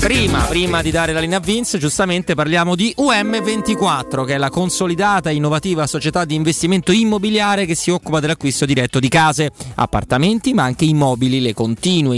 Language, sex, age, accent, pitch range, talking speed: Italian, male, 30-49, native, 125-170 Hz, 170 wpm